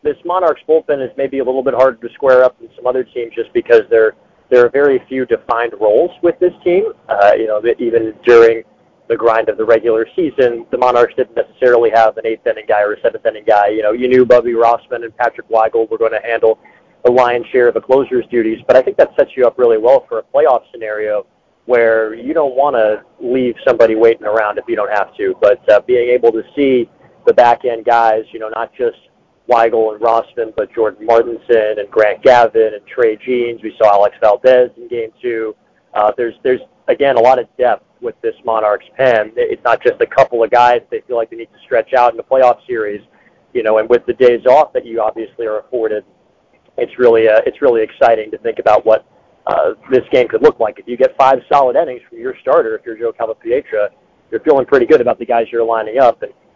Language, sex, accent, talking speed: English, male, American, 230 wpm